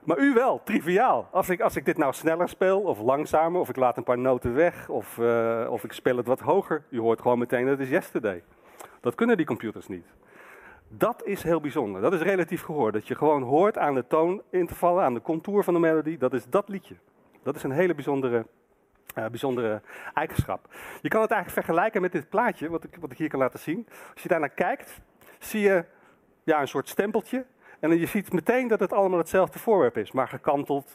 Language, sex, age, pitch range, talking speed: Dutch, male, 40-59, 130-185 Hz, 225 wpm